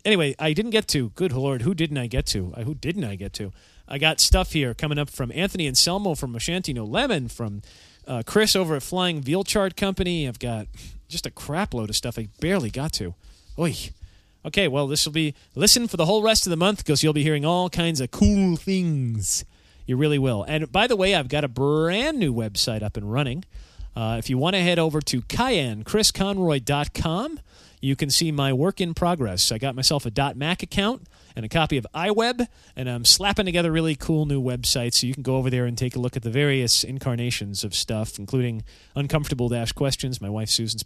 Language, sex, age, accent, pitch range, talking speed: English, male, 40-59, American, 115-170 Hz, 215 wpm